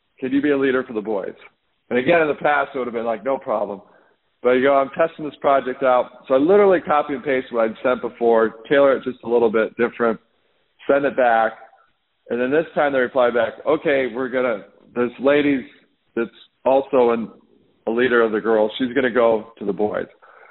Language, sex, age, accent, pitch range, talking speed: English, male, 50-69, American, 115-140 Hz, 220 wpm